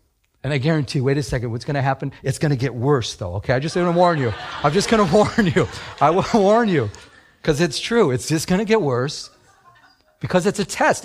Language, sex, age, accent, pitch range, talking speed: English, male, 50-69, American, 125-185 Hz, 255 wpm